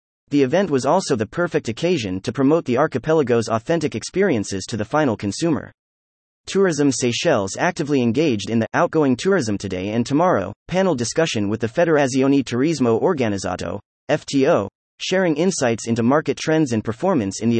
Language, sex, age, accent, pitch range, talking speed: English, male, 30-49, American, 110-160 Hz, 155 wpm